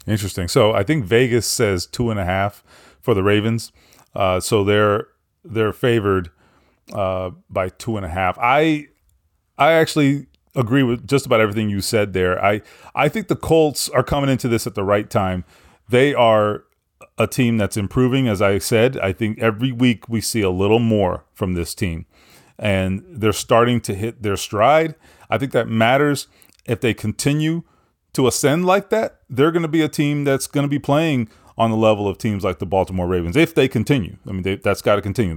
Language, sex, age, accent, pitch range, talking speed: English, male, 30-49, American, 100-140 Hz, 200 wpm